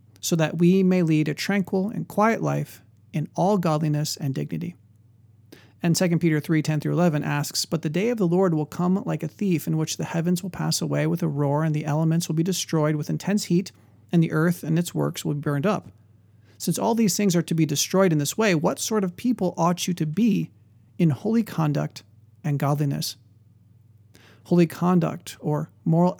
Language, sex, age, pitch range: English, male, 40-59, 145-180 Hz